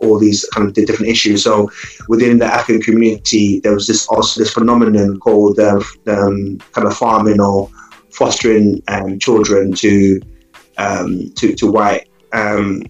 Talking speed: 160 wpm